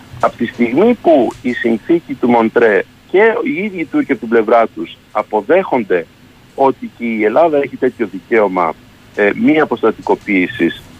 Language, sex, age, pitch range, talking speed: Greek, male, 50-69, 115-180 Hz, 155 wpm